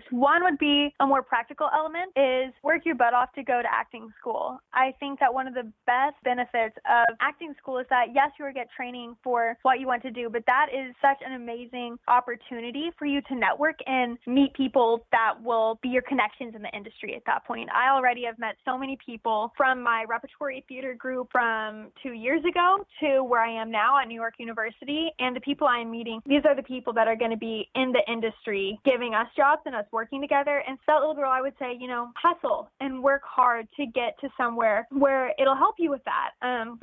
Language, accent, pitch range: English, American, 235-280 Hz